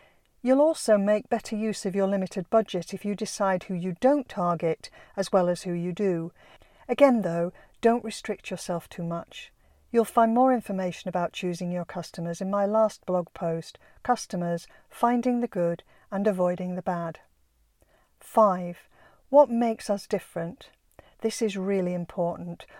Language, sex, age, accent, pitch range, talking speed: English, female, 50-69, British, 180-230 Hz, 155 wpm